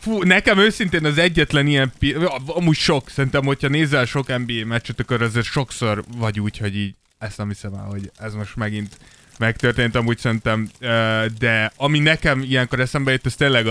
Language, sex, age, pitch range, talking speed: Hungarian, male, 20-39, 115-145 Hz, 175 wpm